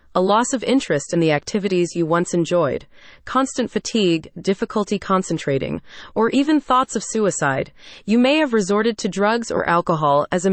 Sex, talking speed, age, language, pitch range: female, 165 wpm, 30-49, English, 170-240 Hz